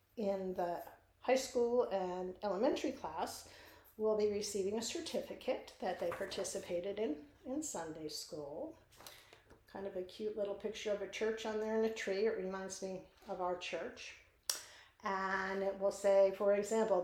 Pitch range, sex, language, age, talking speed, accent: 190-225 Hz, female, English, 50-69, 160 wpm, American